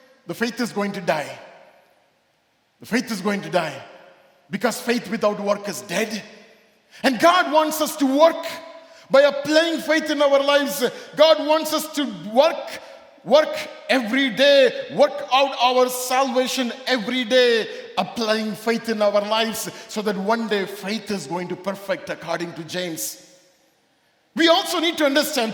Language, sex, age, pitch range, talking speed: English, male, 50-69, 220-300 Hz, 155 wpm